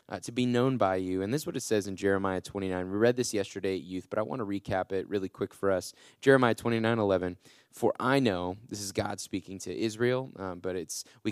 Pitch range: 95-115 Hz